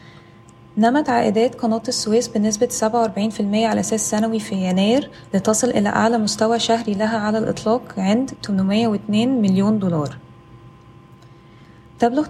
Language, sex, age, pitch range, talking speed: Arabic, female, 20-39, 195-230 Hz, 115 wpm